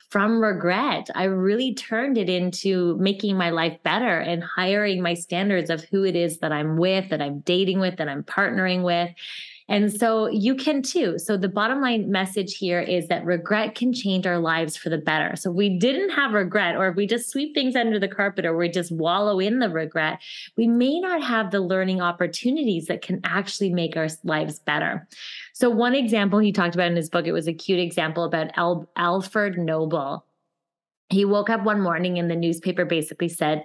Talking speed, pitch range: 200 wpm, 175-215 Hz